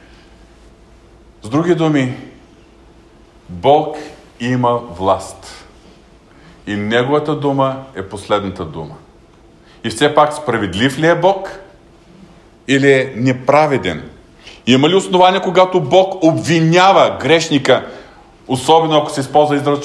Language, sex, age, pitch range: Bulgarian, male, 40-59, 115-150 Hz